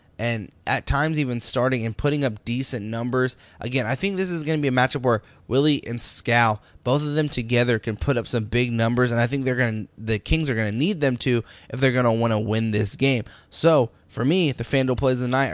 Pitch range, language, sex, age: 110-130 Hz, English, male, 20-39